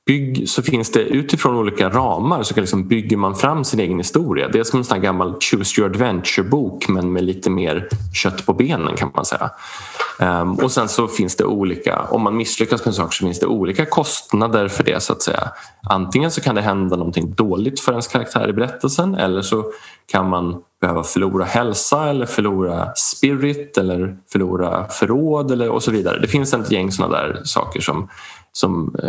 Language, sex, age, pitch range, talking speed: Swedish, male, 20-39, 95-120 Hz, 195 wpm